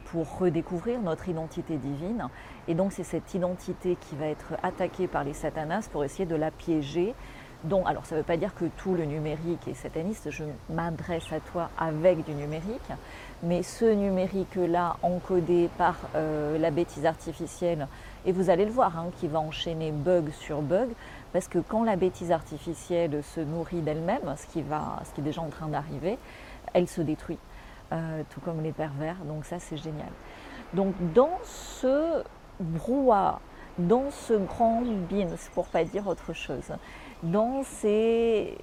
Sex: female